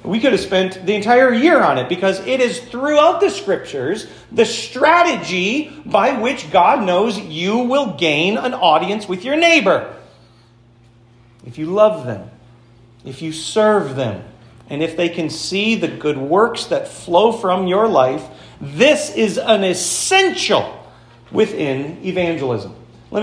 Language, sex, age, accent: English, male, 40-59, American